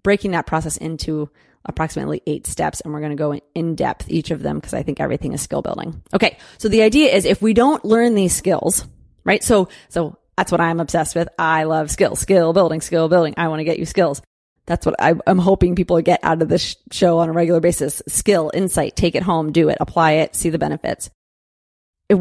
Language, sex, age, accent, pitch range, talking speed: English, female, 30-49, American, 160-200 Hz, 225 wpm